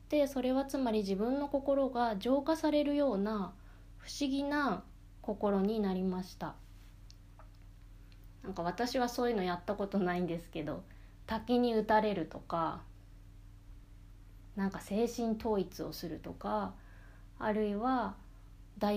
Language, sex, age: Japanese, female, 20-39